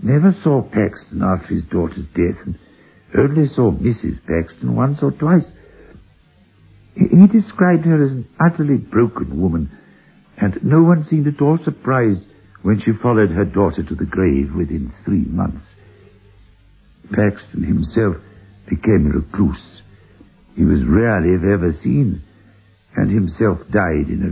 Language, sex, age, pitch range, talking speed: English, male, 60-79, 90-115 Hz, 140 wpm